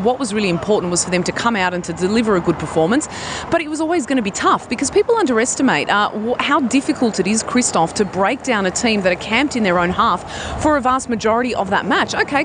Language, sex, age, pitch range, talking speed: English, female, 30-49, 180-245 Hz, 255 wpm